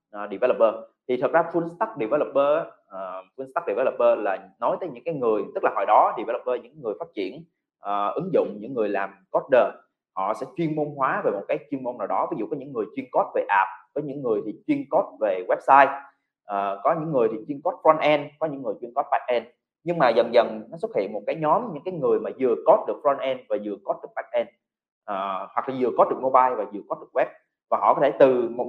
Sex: male